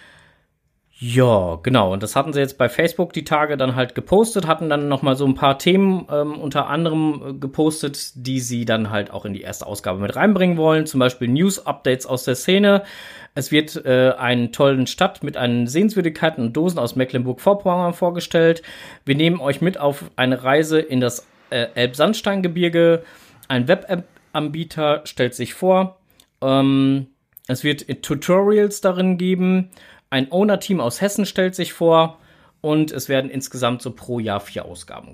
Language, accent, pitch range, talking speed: German, German, 125-170 Hz, 165 wpm